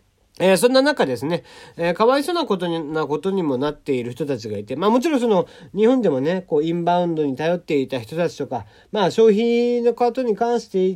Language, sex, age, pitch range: Japanese, male, 40-59, 135-215 Hz